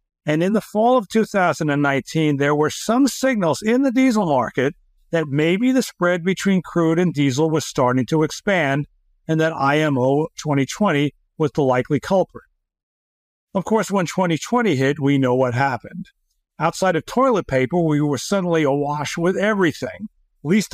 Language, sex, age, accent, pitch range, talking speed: English, male, 60-79, American, 135-175 Hz, 155 wpm